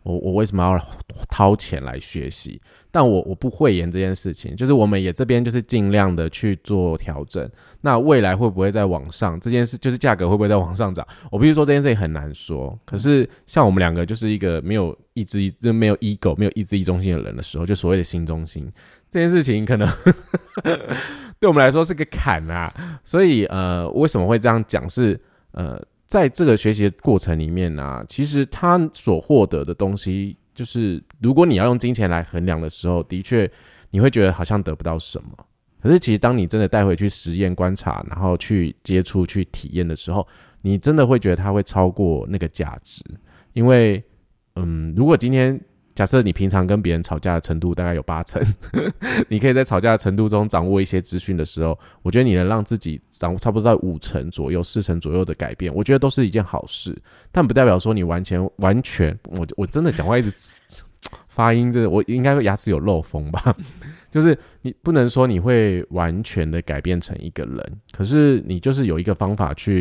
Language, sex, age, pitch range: Chinese, male, 20-39, 85-115 Hz